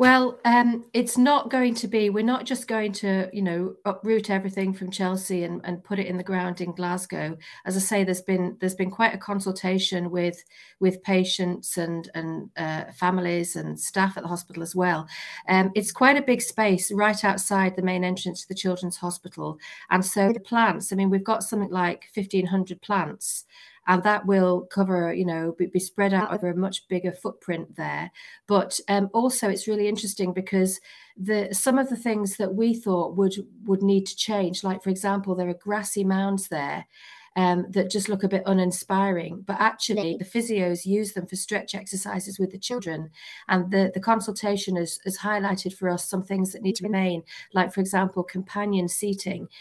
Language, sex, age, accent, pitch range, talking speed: English, female, 40-59, British, 180-205 Hz, 195 wpm